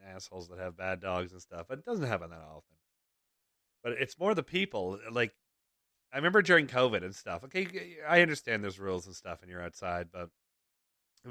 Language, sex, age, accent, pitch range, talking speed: English, male, 30-49, American, 95-120 Hz, 195 wpm